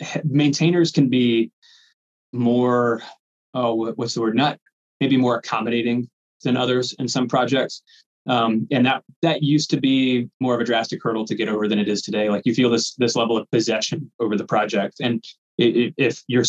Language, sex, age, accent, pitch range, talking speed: English, male, 20-39, American, 110-130 Hz, 180 wpm